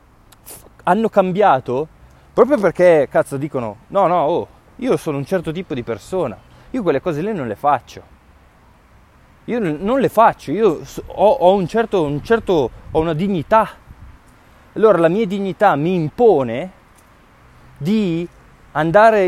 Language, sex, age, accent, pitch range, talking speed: Italian, male, 20-39, native, 135-215 Hz, 140 wpm